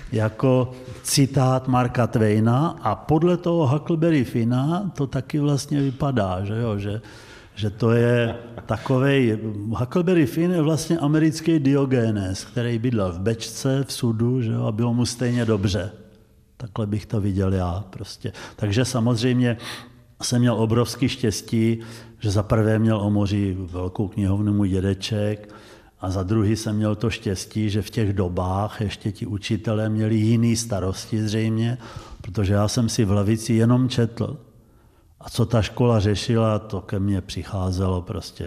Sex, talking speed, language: male, 150 wpm, Czech